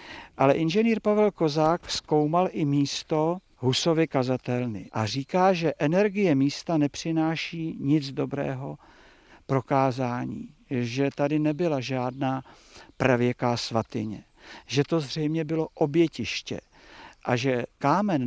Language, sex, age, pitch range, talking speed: Czech, male, 50-69, 125-150 Hz, 105 wpm